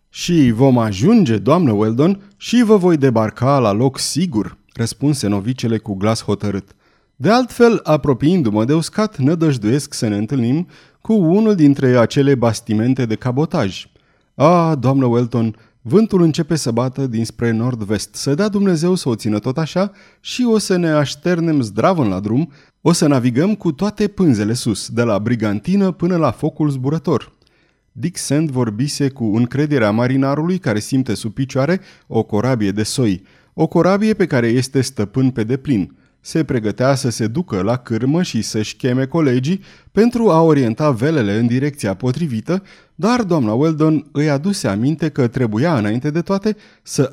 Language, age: Romanian, 30-49